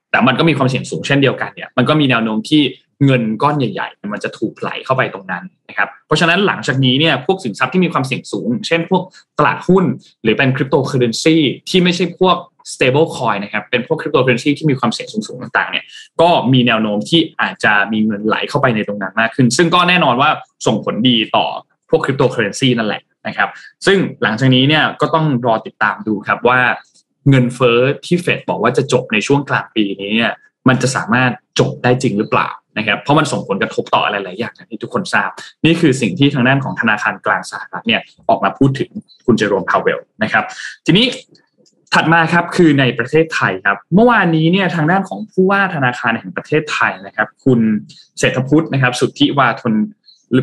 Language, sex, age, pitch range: Thai, male, 20-39, 125-170 Hz